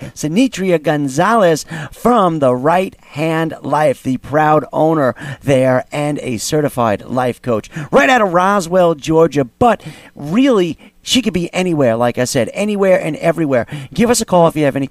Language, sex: English, male